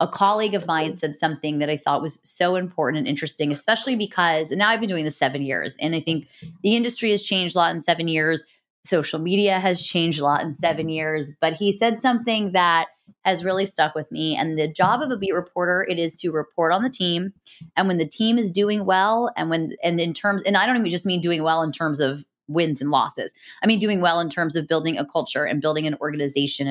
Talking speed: 245 wpm